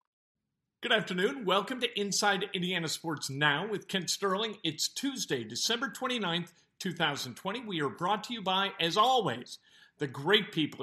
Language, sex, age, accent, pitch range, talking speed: English, male, 50-69, American, 155-205 Hz, 150 wpm